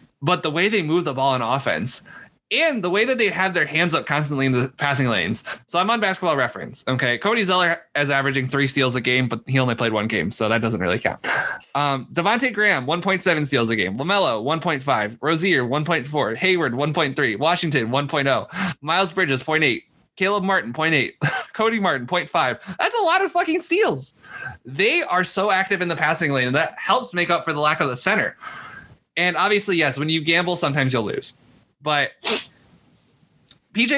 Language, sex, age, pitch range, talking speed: English, male, 20-39, 135-180 Hz, 195 wpm